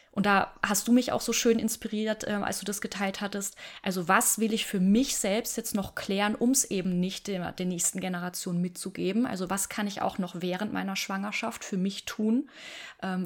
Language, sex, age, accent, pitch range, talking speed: German, female, 20-39, German, 190-225 Hz, 210 wpm